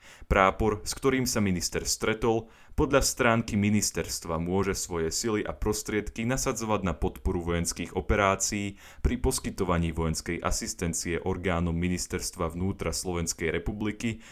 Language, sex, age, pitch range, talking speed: Slovak, male, 20-39, 85-105 Hz, 115 wpm